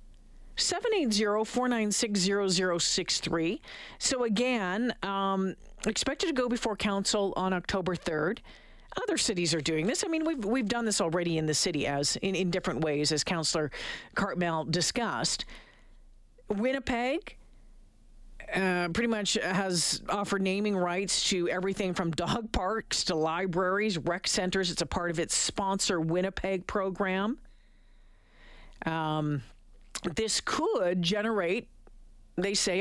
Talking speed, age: 140 wpm, 50-69